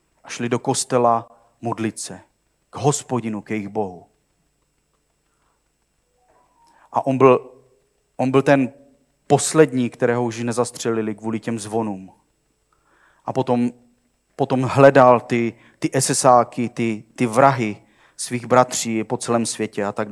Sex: male